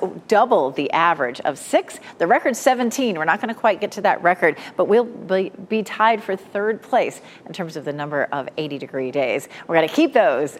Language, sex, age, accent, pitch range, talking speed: English, female, 40-59, American, 165-225 Hz, 215 wpm